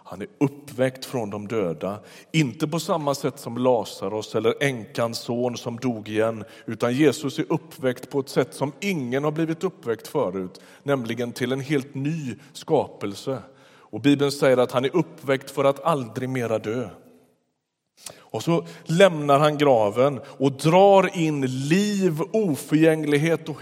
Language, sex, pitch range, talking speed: Swedish, male, 120-155 Hz, 150 wpm